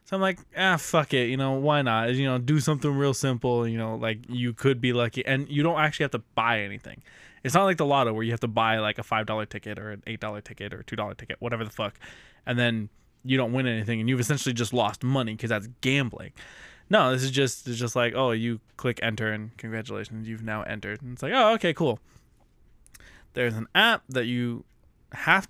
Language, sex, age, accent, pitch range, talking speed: English, male, 20-39, American, 115-135 Hz, 230 wpm